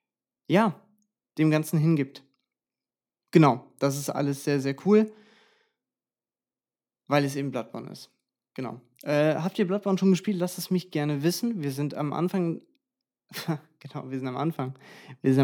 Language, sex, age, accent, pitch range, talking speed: German, male, 20-39, German, 140-170 Hz, 150 wpm